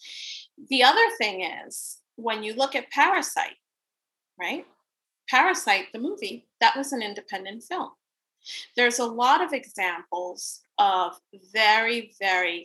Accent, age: American, 30-49